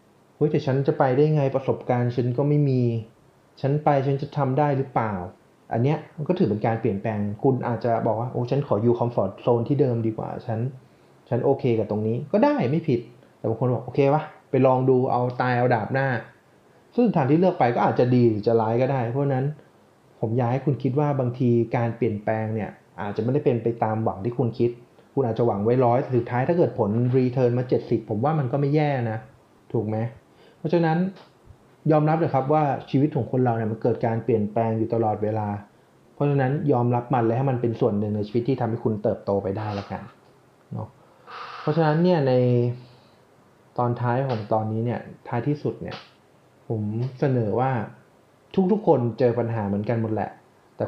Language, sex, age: Thai, male, 30-49